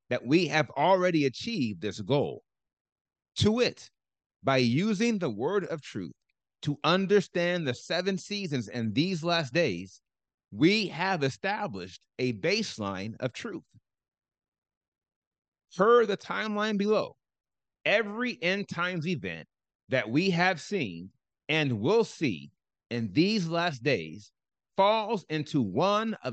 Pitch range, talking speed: 110-180 Hz, 125 wpm